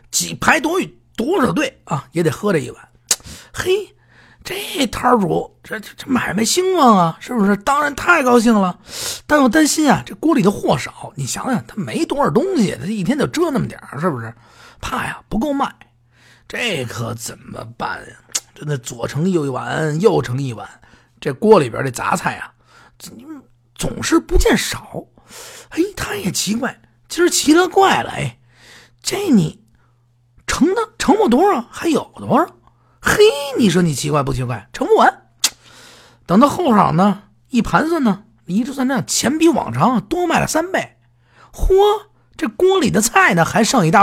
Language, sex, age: Chinese, male, 50-69